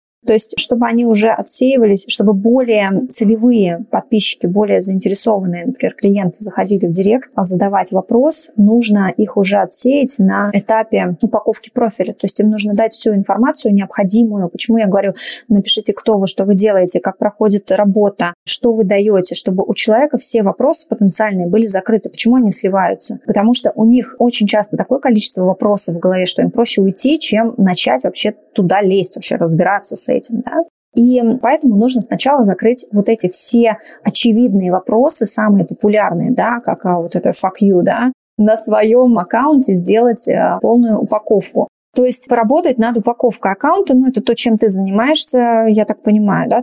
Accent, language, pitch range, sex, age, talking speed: native, Russian, 200-240 Hz, female, 20-39, 165 wpm